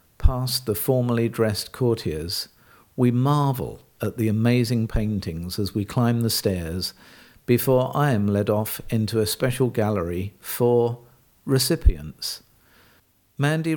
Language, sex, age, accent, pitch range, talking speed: English, male, 50-69, British, 105-125 Hz, 120 wpm